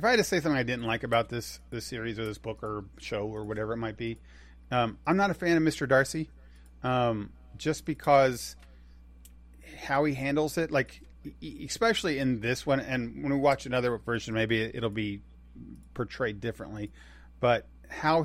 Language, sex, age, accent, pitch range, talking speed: English, male, 40-59, American, 100-145 Hz, 185 wpm